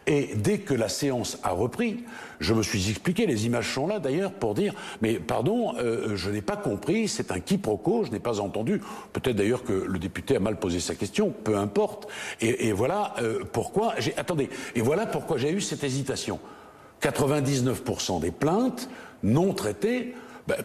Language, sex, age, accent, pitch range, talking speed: French, male, 60-79, French, 110-155 Hz, 185 wpm